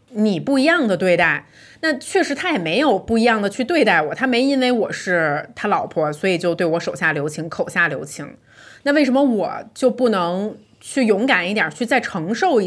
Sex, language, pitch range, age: female, Chinese, 175-250 Hz, 30-49